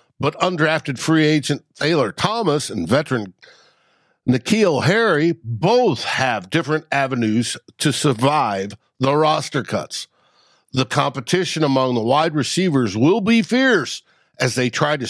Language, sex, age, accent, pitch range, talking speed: English, male, 60-79, American, 130-180 Hz, 125 wpm